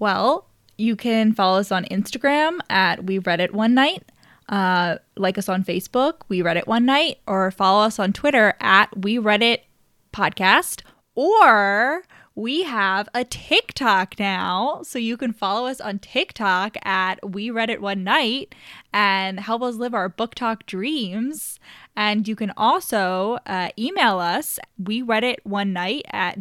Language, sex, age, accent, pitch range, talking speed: English, female, 10-29, American, 190-240 Hz, 150 wpm